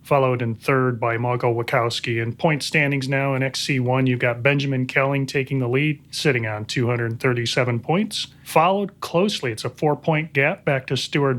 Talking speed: 170 wpm